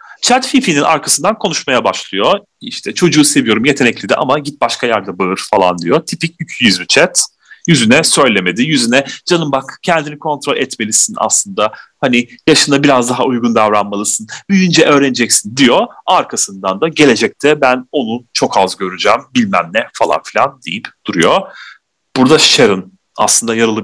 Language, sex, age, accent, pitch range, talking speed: Turkish, male, 40-59, native, 115-175 Hz, 145 wpm